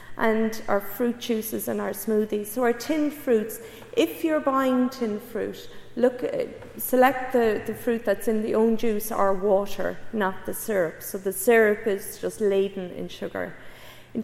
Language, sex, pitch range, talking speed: English, female, 195-240 Hz, 170 wpm